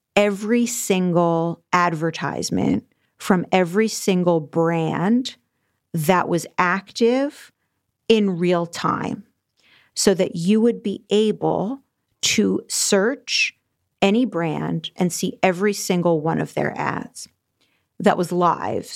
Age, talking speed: 40-59, 110 wpm